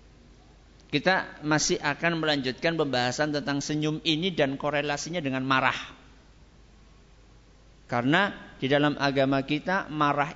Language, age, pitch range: Malay, 50-69, 145-200 Hz